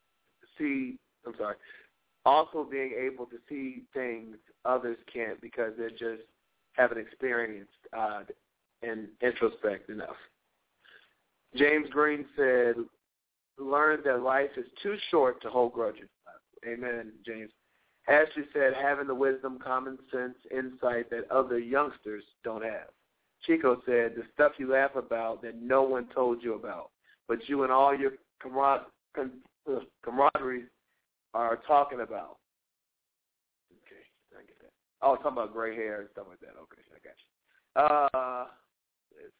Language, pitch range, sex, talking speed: English, 120-140 Hz, male, 135 wpm